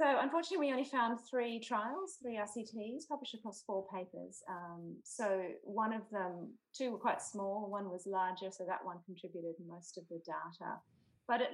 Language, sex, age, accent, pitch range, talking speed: English, female, 30-49, Australian, 170-230 Hz, 180 wpm